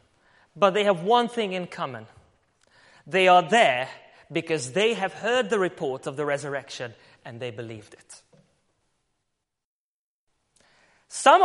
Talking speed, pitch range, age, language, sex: 125 wpm, 195-310 Hz, 30-49, English, male